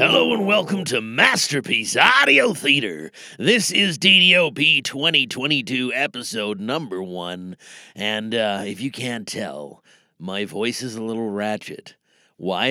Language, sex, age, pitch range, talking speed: English, male, 40-59, 95-140 Hz, 125 wpm